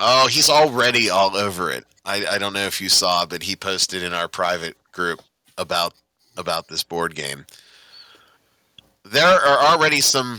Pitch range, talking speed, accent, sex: 95-130 Hz, 170 wpm, American, male